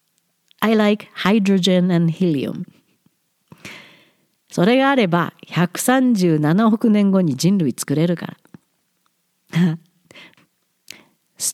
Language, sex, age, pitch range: Japanese, female, 50-69, 170-255 Hz